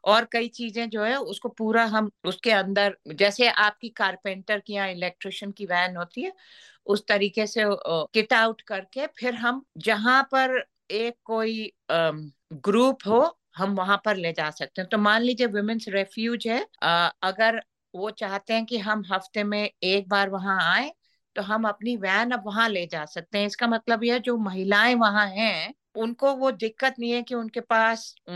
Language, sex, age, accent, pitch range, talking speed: Hindi, female, 50-69, native, 190-235 Hz, 180 wpm